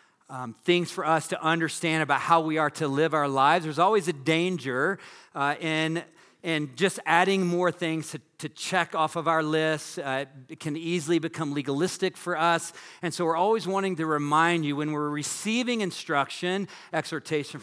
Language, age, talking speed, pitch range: English, 40-59, 180 wpm, 150-180 Hz